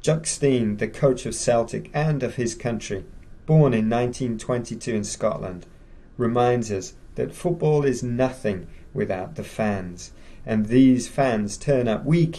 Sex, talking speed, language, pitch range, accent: male, 140 wpm, English, 100-130 Hz, British